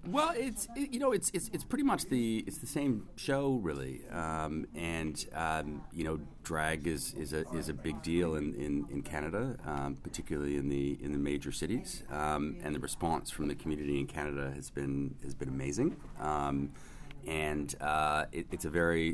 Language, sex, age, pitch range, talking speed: English, male, 40-59, 70-85 Hz, 195 wpm